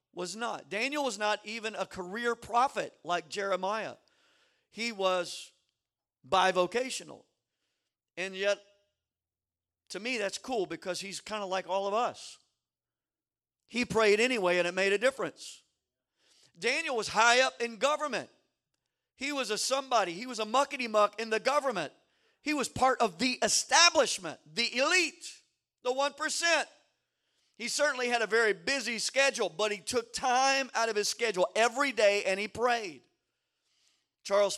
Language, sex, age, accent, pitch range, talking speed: English, male, 50-69, American, 195-245 Hz, 150 wpm